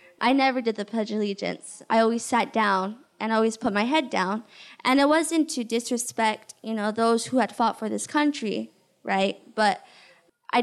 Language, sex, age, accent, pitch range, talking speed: English, female, 10-29, American, 220-260 Hz, 190 wpm